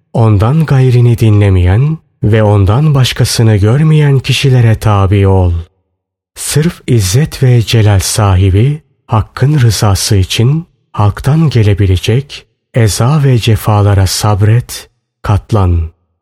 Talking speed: 95 wpm